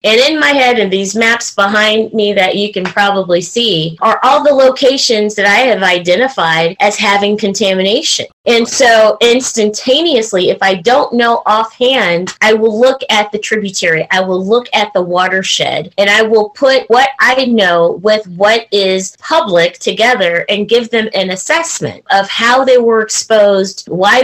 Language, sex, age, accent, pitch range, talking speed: English, female, 30-49, American, 190-240 Hz, 170 wpm